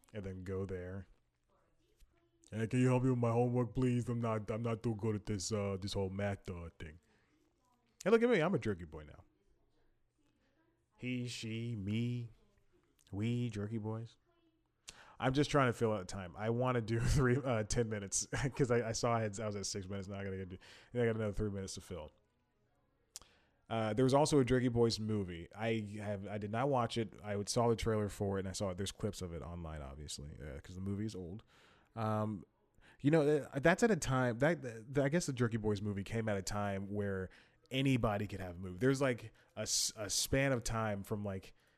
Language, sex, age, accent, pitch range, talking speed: English, male, 30-49, American, 100-120 Hz, 220 wpm